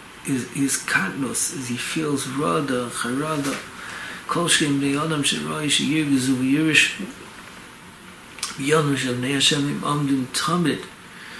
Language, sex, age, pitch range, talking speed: English, male, 60-79, 130-150 Hz, 105 wpm